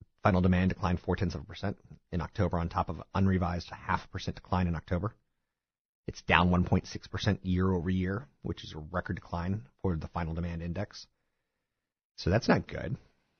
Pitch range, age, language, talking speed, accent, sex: 85-115 Hz, 30-49, English, 190 wpm, American, male